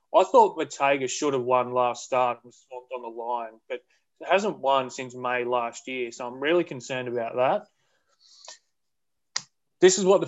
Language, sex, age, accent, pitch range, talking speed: English, male, 20-39, Australian, 125-155 Hz, 180 wpm